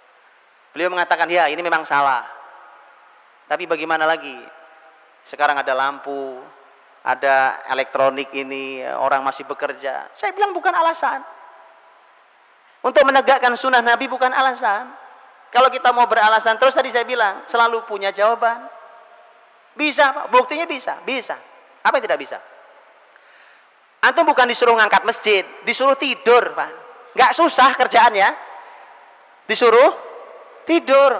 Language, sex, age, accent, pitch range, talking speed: English, male, 30-49, Indonesian, 205-290 Hz, 115 wpm